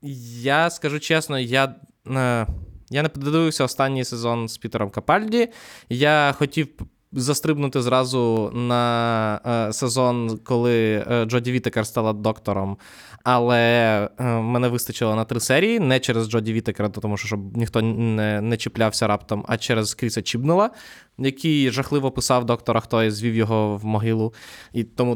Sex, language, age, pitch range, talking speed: male, Ukrainian, 20-39, 115-140 Hz, 145 wpm